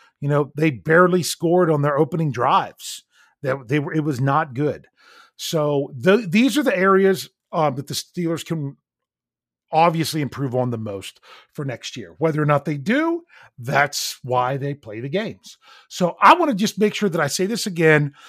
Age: 40-59